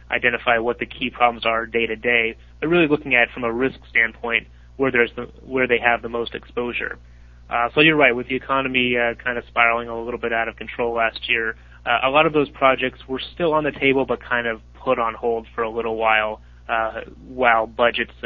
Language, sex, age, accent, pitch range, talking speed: English, male, 30-49, American, 110-125 Hz, 230 wpm